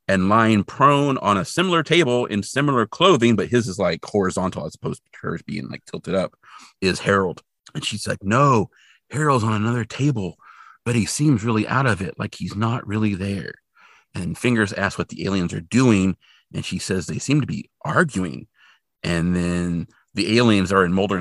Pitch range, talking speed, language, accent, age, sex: 95-125 Hz, 190 wpm, English, American, 40-59, male